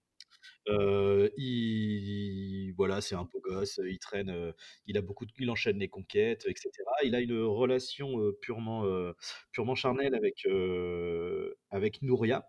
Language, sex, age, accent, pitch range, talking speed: French, male, 30-49, French, 105-145 Hz, 155 wpm